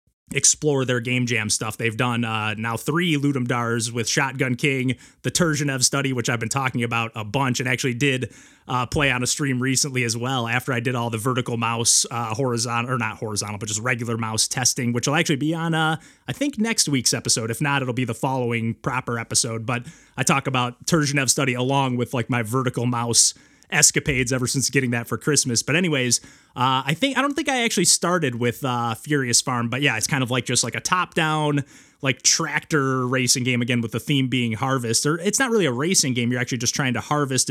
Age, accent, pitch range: 30-49, American, 120-145 Hz